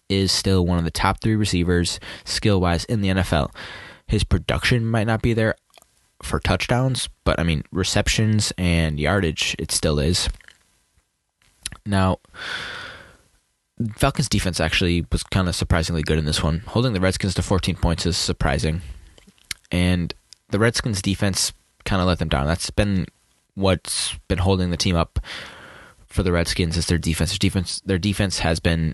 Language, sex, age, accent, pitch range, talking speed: English, male, 20-39, American, 85-95 Hz, 160 wpm